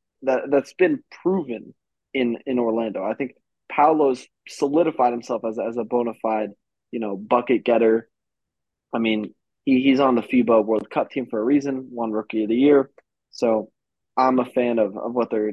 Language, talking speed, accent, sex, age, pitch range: English, 180 wpm, American, male, 20-39, 110-130 Hz